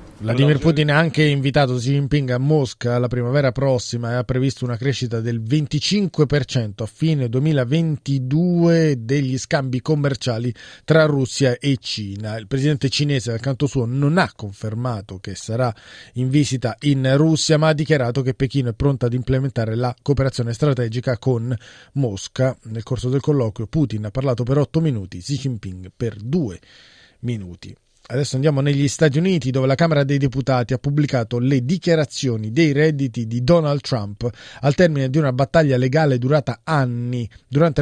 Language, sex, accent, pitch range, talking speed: Italian, male, native, 120-145 Hz, 160 wpm